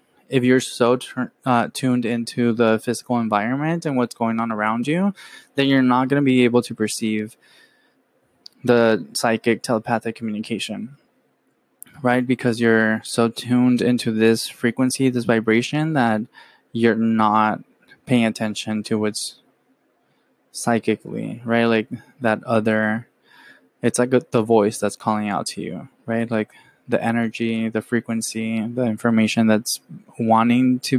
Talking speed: 135 wpm